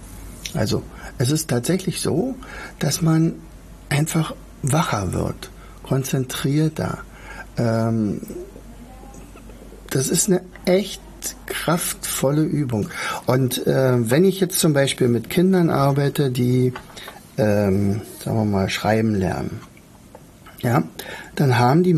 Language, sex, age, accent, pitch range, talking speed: German, male, 60-79, German, 120-160 Hz, 105 wpm